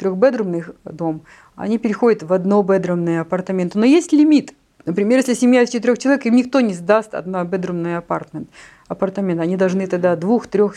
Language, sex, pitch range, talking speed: Russian, female, 190-240 Hz, 145 wpm